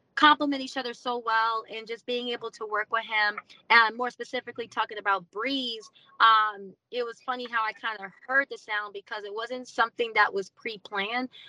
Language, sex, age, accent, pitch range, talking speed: English, female, 20-39, American, 220-275 Hz, 195 wpm